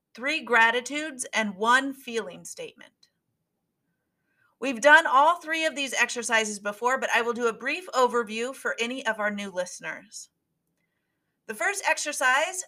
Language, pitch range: English, 220-290 Hz